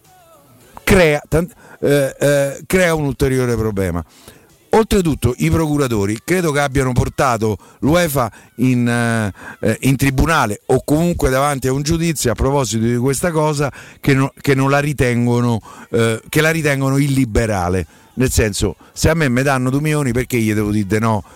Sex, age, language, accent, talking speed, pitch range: male, 50-69, Italian, native, 130 wpm, 115-155 Hz